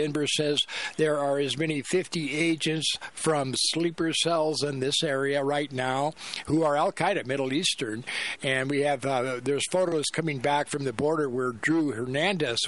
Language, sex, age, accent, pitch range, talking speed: English, male, 60-79, American, 135-165 Hz, 165 wpm